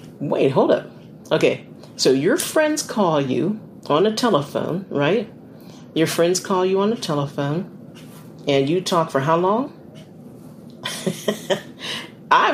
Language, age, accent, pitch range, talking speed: English, 50-69, American, 155-210 Hz, 130 wpm